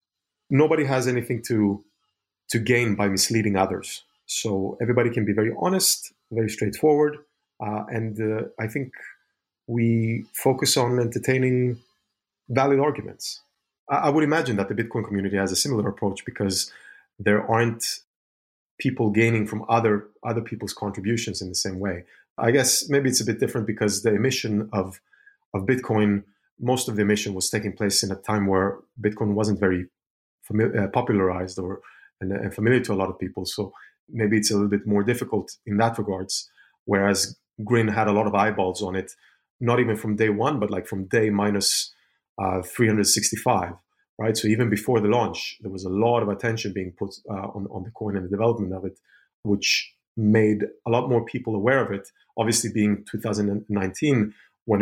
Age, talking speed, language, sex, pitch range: 30-49, 175 wpm, English, male, 100-115 Hz